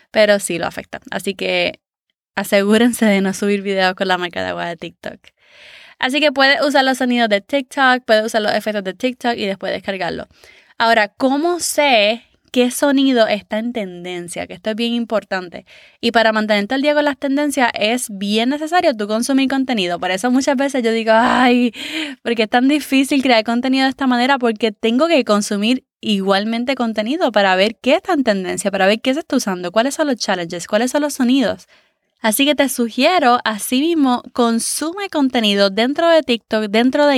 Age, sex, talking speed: 20-39, female, 190 wpm